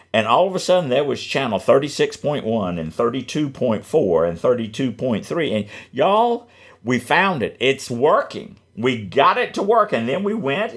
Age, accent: 50-69, American